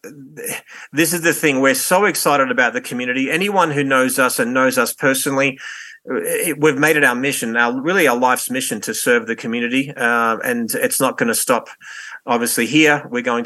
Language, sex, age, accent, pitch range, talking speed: English, male, 40-59, Australian, 130-150 Hz, 190 wpm